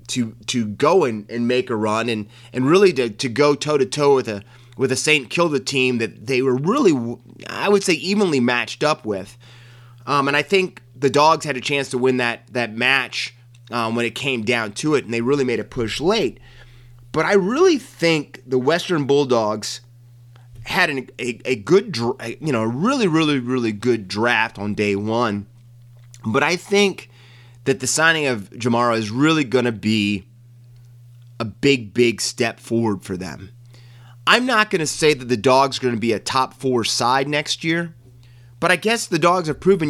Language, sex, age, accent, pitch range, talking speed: English, male, 30-49, American, 120-145 Hz, 200 wpm